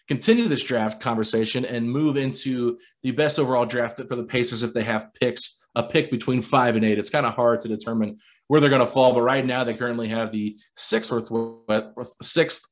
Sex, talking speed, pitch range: male, 215 wpm, 110-130 Hz